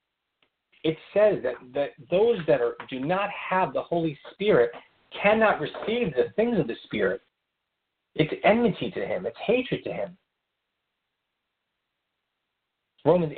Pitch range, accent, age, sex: 125-185 Hz, American, 40-59, male